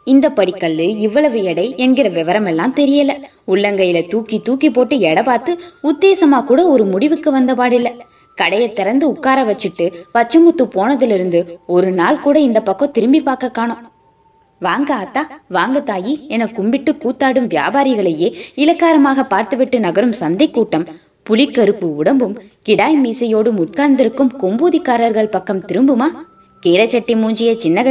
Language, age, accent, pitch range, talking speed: Tamil, 20-39, native, 195-280 Hz, 120 wpm